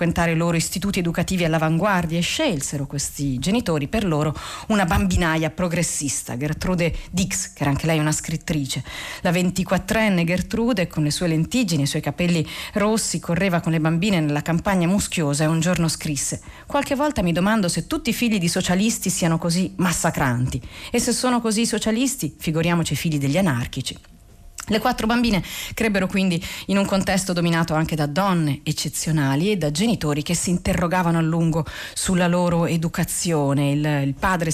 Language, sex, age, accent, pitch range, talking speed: Italian, female, 40-59, native, 160-195 Hz, 165 wpm